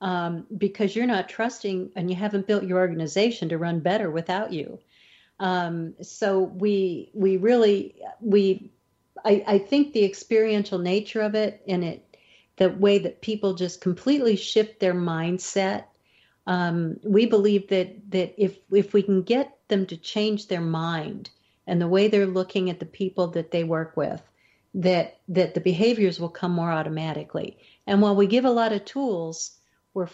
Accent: American